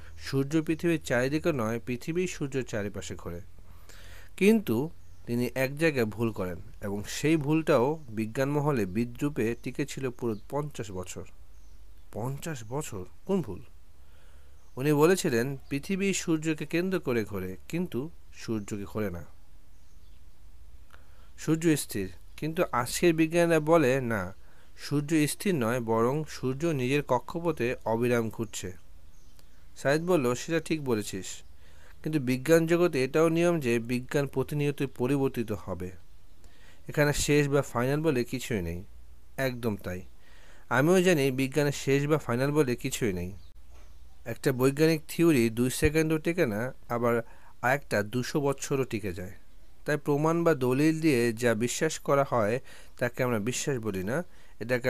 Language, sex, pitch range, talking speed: Bengali, male, 90-150 Hz, 125 wpm